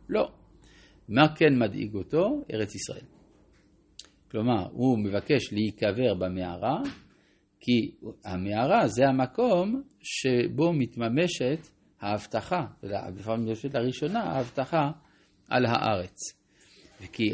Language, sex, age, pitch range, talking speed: Hebrew, male, 50-69, 100-150 Hz, 100 wpm